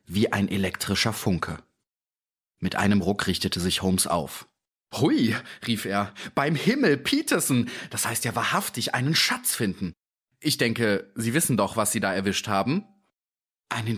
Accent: German